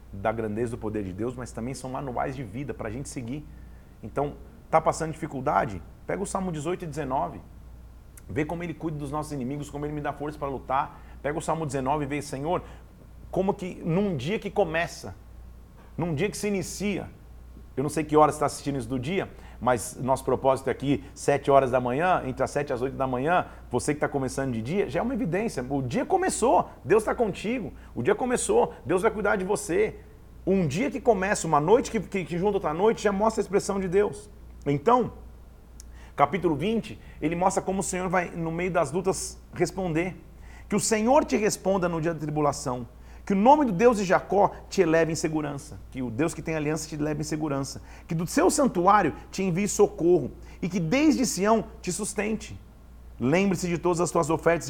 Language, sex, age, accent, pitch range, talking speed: Portuguese, male, 40-59, Brazilian, 135-190 Hz, 205 wpm